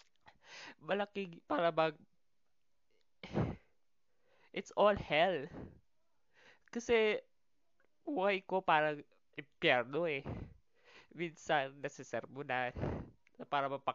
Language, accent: Filipino, native